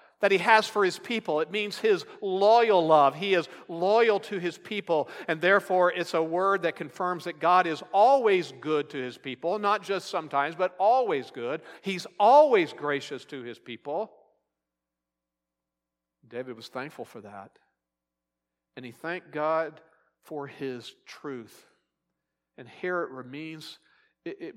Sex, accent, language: male, American, English